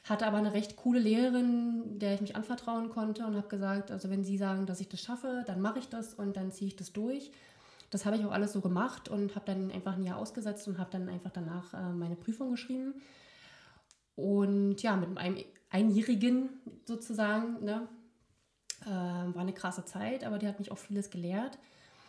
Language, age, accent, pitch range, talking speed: German, 20-39, German, 190-220 Hz, 195 wpm